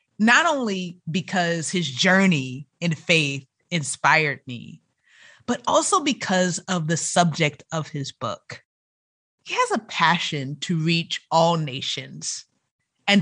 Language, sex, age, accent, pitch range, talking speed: English, female, 30-49, American, 150-200 Hz, 125 wpm